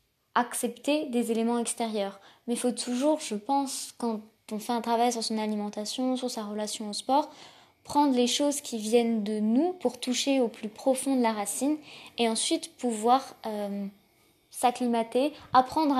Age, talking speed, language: 20-39, 165 wpm, French